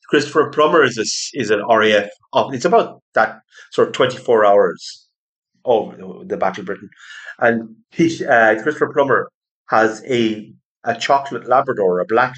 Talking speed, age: 160 wpm, 30-49